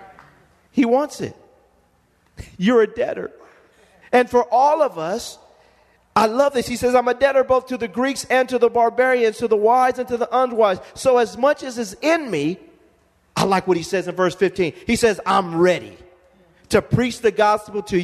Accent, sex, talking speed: American, male, 195 wpm